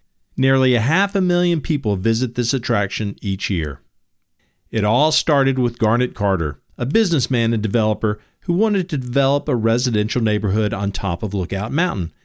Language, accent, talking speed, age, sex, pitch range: English, American, 160 wpm, 50-69, male, 95-140 Hz